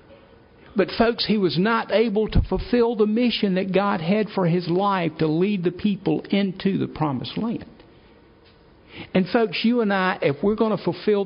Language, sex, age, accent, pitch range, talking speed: English, male, 60-79, American, 140-195 Hz, 180 wpm